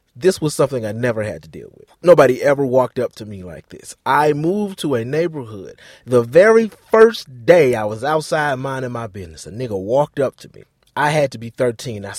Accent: American